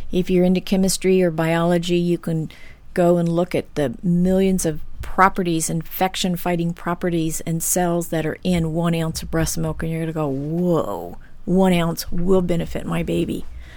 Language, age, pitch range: English, 50-69, 170-200 Hz